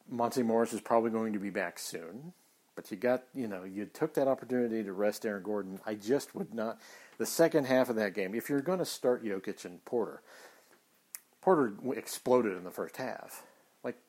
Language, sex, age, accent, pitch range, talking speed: English, male, 50-69, American, 105-140 Hz, 200 wpm